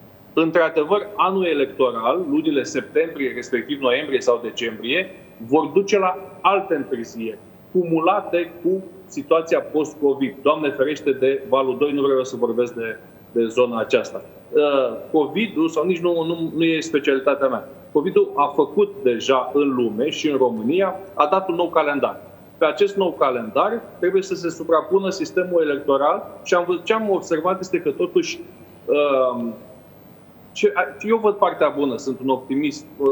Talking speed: 145 wpm